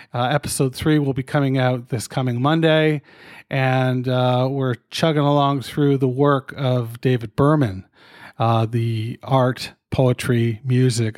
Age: 40-59